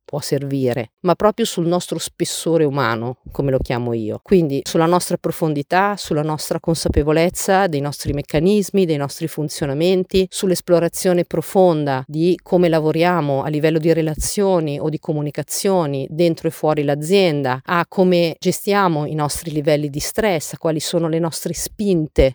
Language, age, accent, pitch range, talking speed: Italian, 40-59, native, 150-180 Hz, 150 wpm